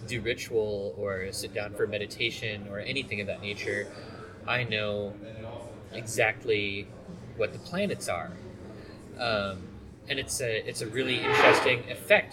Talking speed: 135 wpm